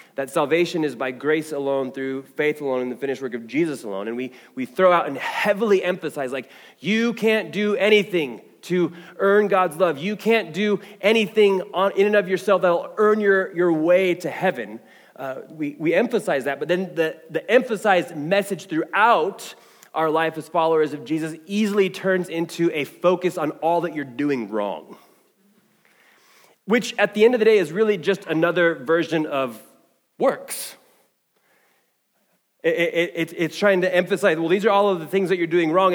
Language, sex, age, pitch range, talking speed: English, male, 20-39, 160-205 Hz, 185 wpm